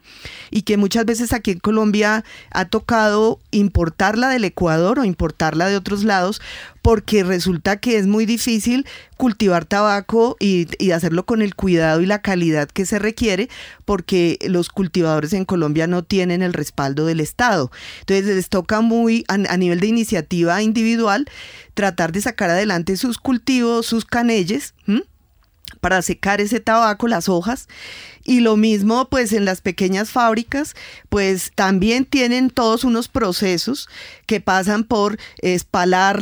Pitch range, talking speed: 185-225 Hz, 145 wpm